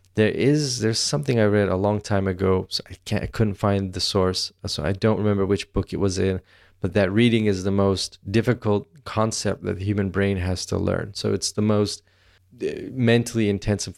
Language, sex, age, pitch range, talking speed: English, male, 20-39, 95-110 Hz, 205 wpm